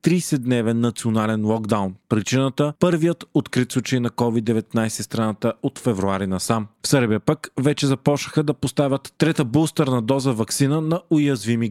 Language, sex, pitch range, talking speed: Bulgarian, male, 115-140 Hz, 145 wpm